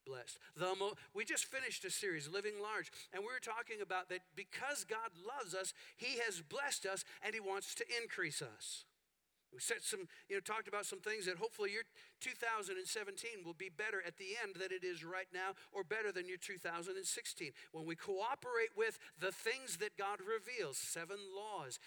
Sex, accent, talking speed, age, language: male, American, 190 wpm, 50-69, English